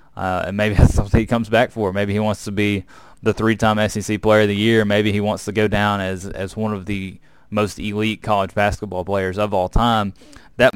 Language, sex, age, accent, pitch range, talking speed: English, male, 20-39, American, 105-120 Hz, 230 wpm